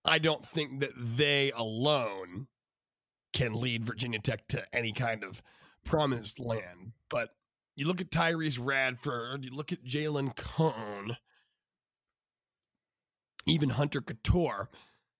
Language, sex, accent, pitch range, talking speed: English, male, American, 125-160 Hz, 120 wpm